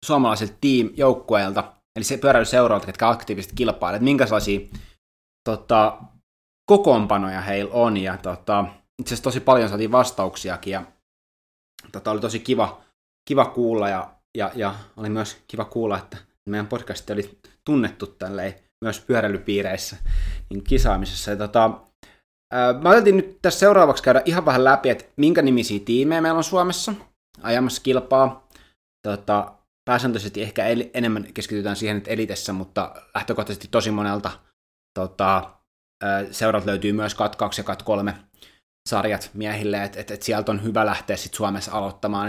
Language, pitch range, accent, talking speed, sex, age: Finnish, 100-115 Hz, native, 135 wpm, male, 20-39